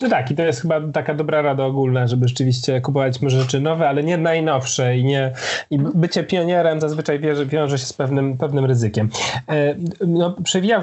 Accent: native